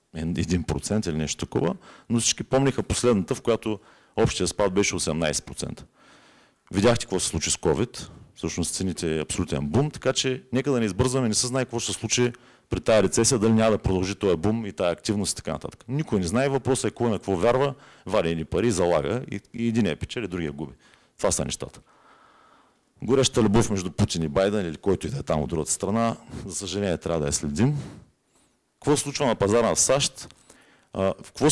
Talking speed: 200 wpm